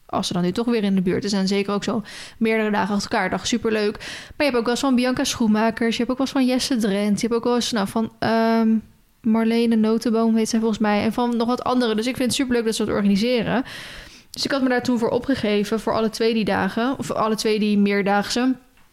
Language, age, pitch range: Dutch, 10-29, 210-240 Hz